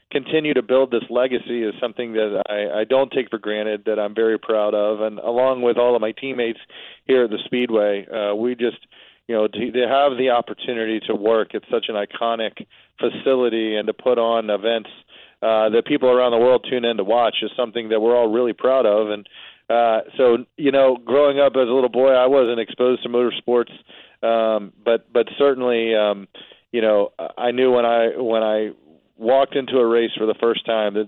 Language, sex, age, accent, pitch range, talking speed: English, male, 40-59, American, 110-125 Hz, 210 wpm